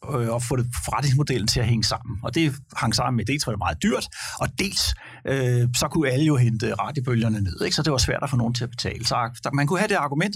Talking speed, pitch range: 250 wpm, 110-145 Hz